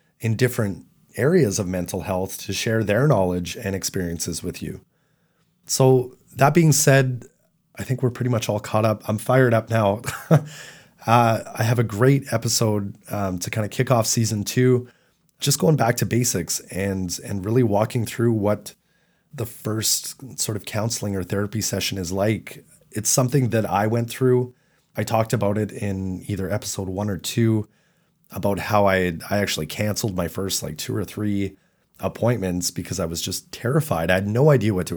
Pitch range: 95-125 Hz